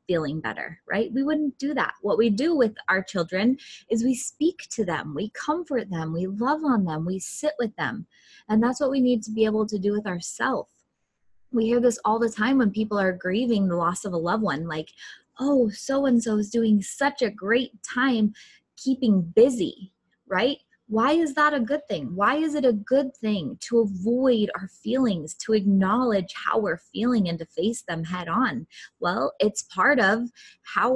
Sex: female